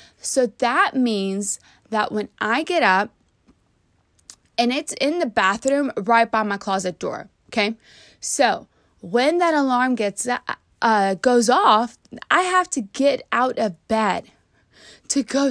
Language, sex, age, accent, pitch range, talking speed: English, female, 20-39, American, 205-265 Hz, 140 wpm